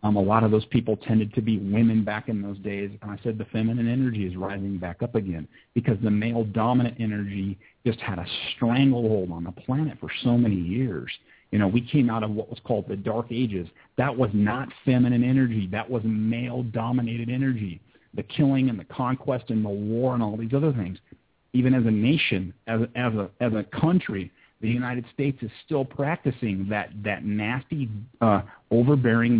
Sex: male